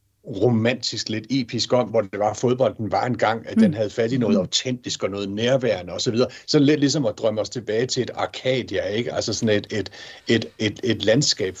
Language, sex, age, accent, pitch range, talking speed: Danish, male, 60-79, native, 110-135 Hz, 220 wpm